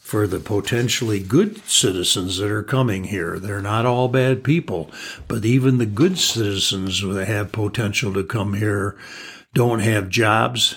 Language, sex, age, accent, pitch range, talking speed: English, male, 60-79, American, 100-125 Hz, 155 wpm